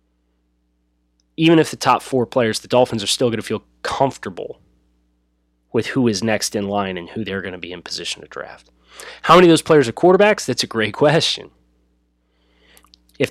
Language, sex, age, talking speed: English, male, 20-39, 190 wpm